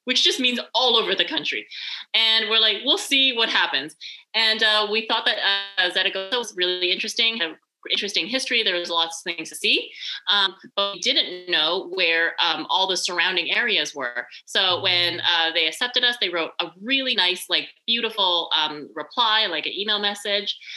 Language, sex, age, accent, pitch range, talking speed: English, female, 30-49, American, 170-215 Hz, 180 wpm